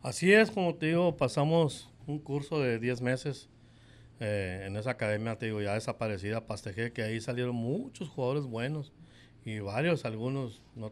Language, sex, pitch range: Spanish, male, 115-155 Hz